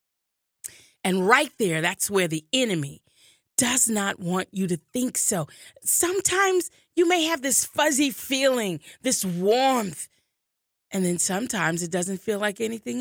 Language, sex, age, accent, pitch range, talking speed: English, female, 30-49, American, 180-285 Hz, 145 wpm